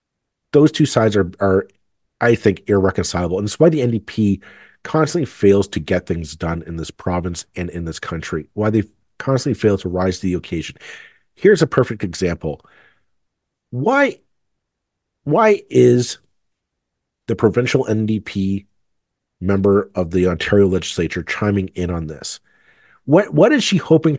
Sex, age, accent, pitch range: male, 40-59, American, 90-120 Hz